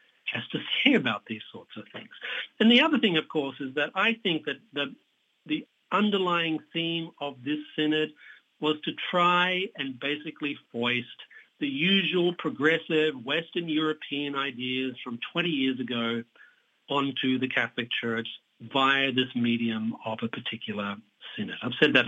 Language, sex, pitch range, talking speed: English, male, 130-175 Hz, 150 wpm